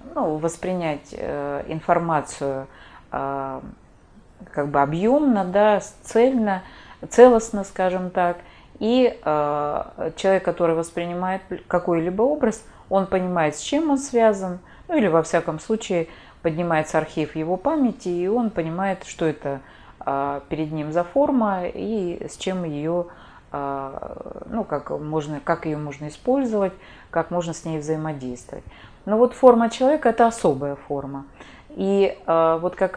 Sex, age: female, 30-49